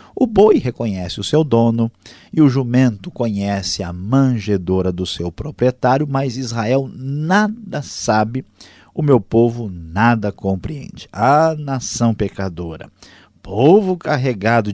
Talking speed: 120 wpm